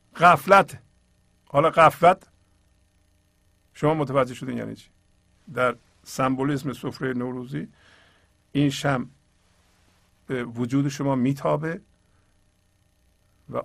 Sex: male